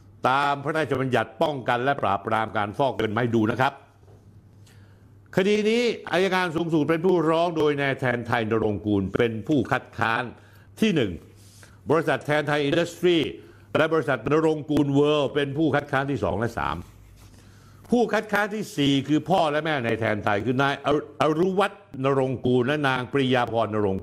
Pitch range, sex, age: 105-155 Hz, male, 60-79